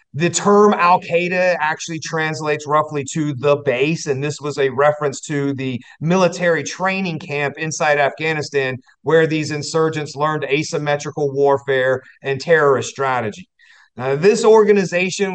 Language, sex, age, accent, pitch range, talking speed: English, male, 40-59, American, 145-180 Hz, 125 wpm